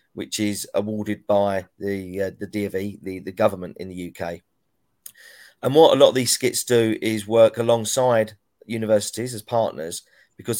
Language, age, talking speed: English, 40-59, 165 wpm